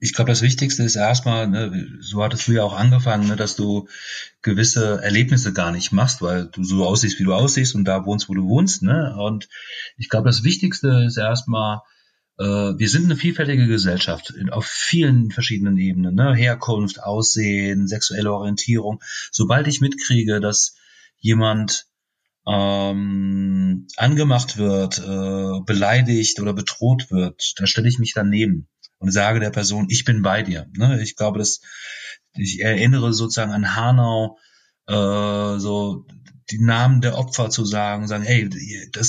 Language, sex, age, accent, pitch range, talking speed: German, male, 40-59, German, 105-125 Hz, 155 wpm